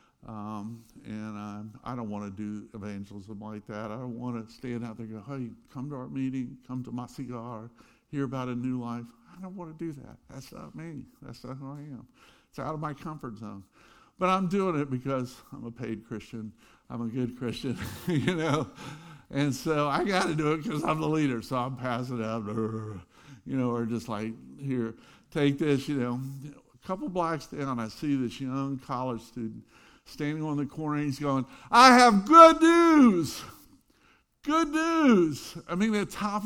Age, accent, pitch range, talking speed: 60-79, American, 120-175 Hz, 200 wpm